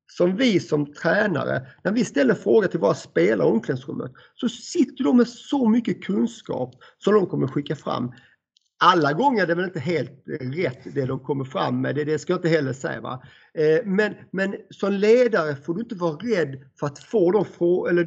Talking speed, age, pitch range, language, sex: 190 wpm, 50-69, 145-200 Hz, Swedish, male